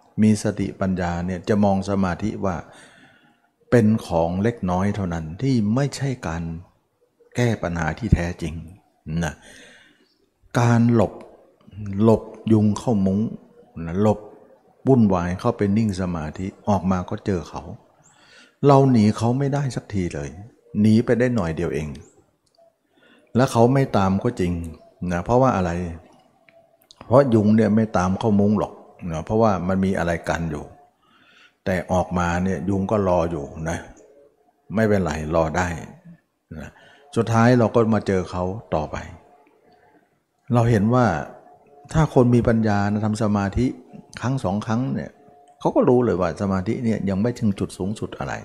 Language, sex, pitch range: Thai, male, 90-120 Hz